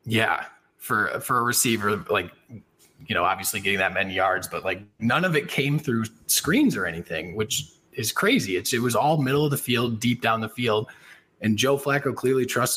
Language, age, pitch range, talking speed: English, 20-39, 95-120 Hz, 200 wpm